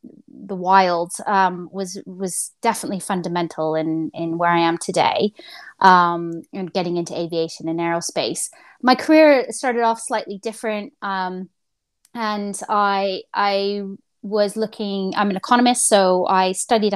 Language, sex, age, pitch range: English, female, 20-39, 185-220 Hz